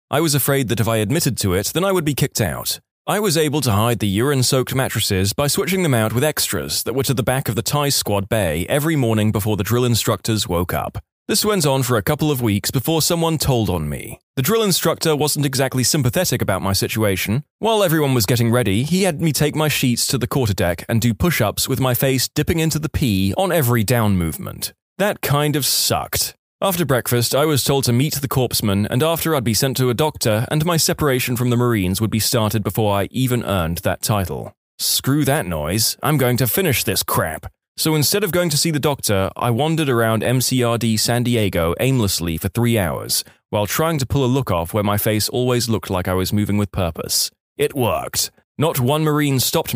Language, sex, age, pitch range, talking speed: English, male, 20-39, 105-145 Hz, 225 wpm